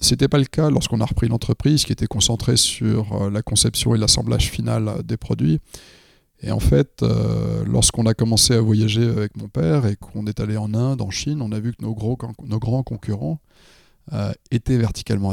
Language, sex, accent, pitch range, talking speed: French, male, French, 105-125 Hz, 190 wpm